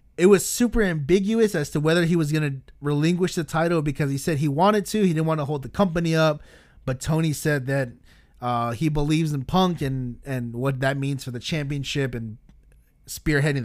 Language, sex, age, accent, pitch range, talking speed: English, male, 30-49, American, 135-175 Hz, 205 wpm